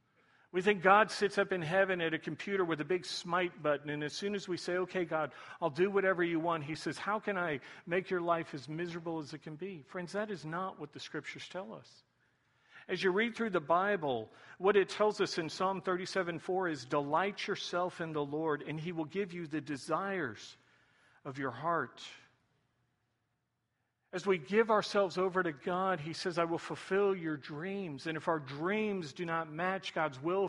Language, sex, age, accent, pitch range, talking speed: English, male, 50-69, American, 150-190 Hz, 205 wpm